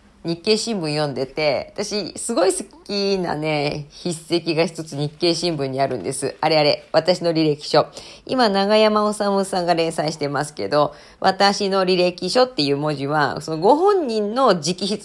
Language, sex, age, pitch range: Japanese, female, 40-59, 155-220 Hz